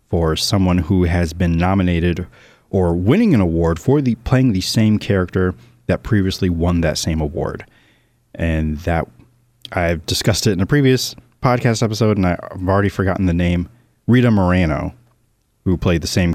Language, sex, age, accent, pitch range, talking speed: English, male, 30-49, American, 85-110 Hz, 160 wpm